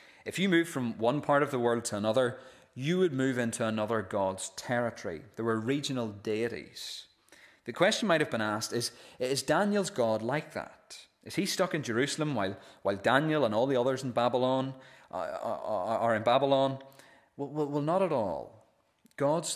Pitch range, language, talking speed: 110-140 Hz, English, 180 wpm